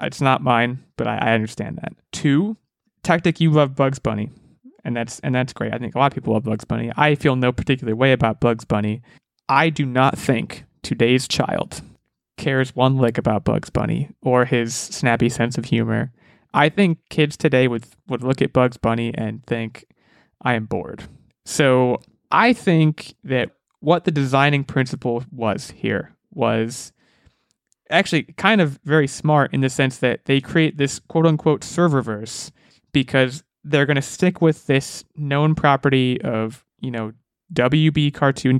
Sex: male